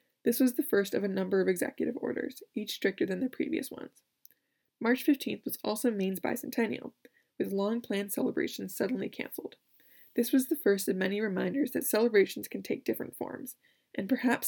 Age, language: 20-39, English